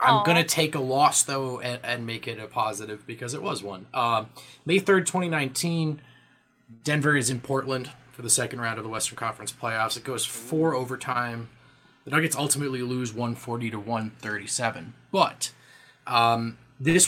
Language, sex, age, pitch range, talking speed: English, male, 20-39, 120-150 Hz, 175 wpm